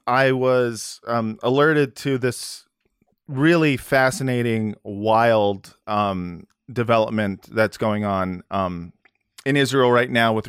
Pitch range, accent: 100-125 Hz, American